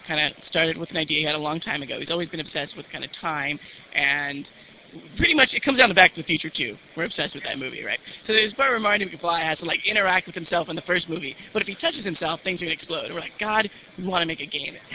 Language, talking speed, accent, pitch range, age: English, 295 wpm, American, 155-200 Hz, 30-49